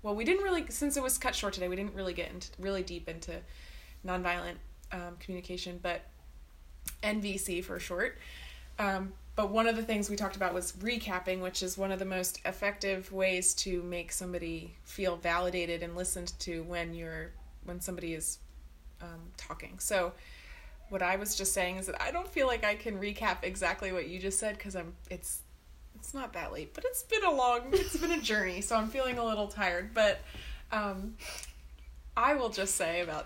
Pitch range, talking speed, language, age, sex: 165-200 Hz, 195 wpm, English, 20-39, female